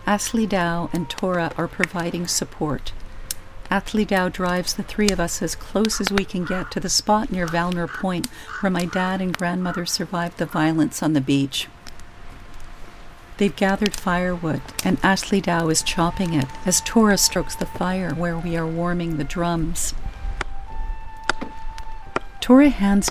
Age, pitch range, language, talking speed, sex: 50-69, 165-195 Hz, English, 155 wpm, female